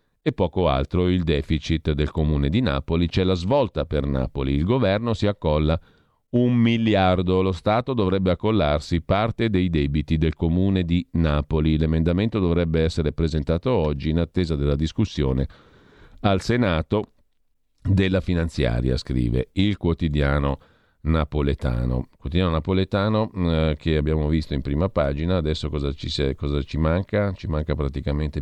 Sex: male